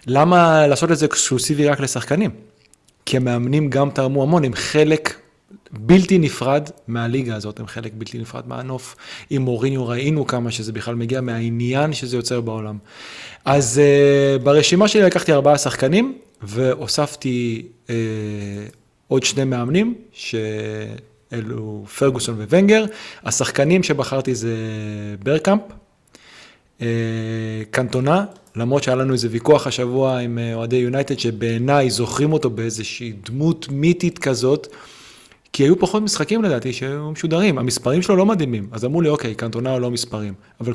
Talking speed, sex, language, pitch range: 135 wpm, male, Hebrew, 115-150 Hz